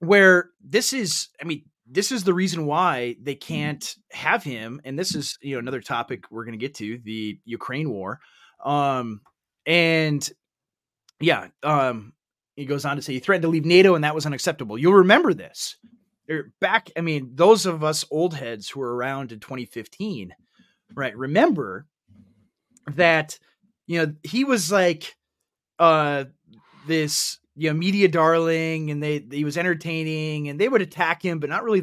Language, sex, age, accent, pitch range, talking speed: English, male, 20-39, American, 140-185 Hz, 170 wpm